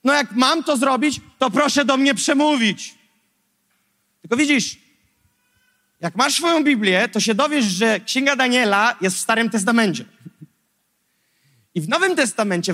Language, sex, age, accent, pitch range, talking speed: Polish, male, 30-49, native, 195-265 Hz, 140 wpm